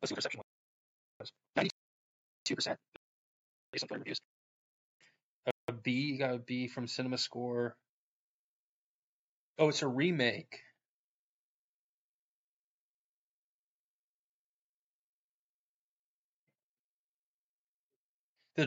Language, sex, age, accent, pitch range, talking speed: English, male, 20-39, American, 115-135 Hz, 55 wpm